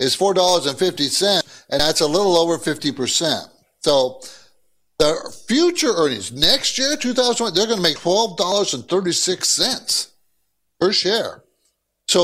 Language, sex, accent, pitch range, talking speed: English, male, American, 135-215 Hz, 110 wpm